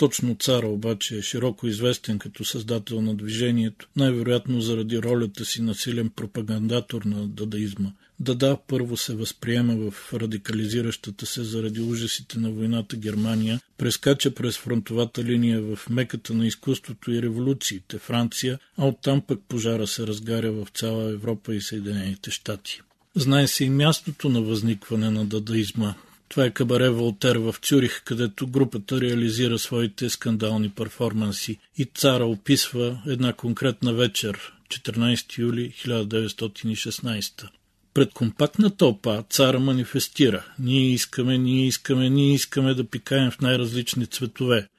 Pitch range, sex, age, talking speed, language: 110-130 Hz, male, 40-59, 130 wpm, Bulgarian